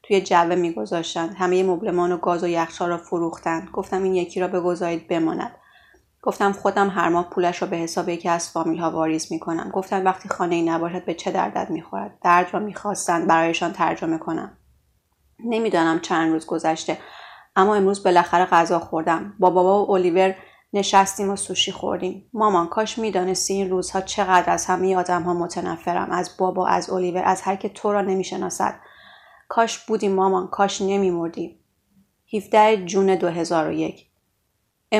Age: 30-49